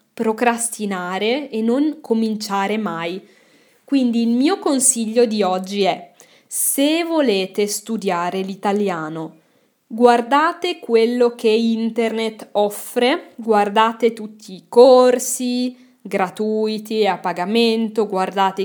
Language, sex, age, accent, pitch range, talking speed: Italian, female, 20-39, native, 205-255 Hz, 95 wpm